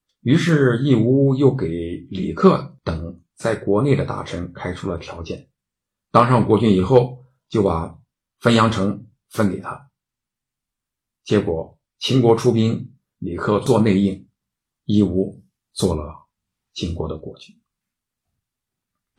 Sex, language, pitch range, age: male, Chinese, 105-150 Hz, 50-69